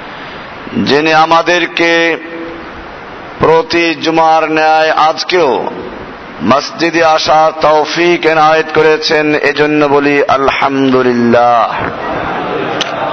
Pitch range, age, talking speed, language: 155-175 Hz, 50-69, 65 wpm, Bengali